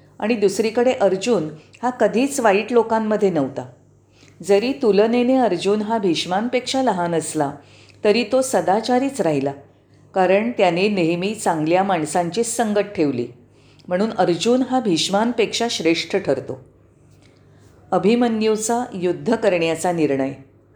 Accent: native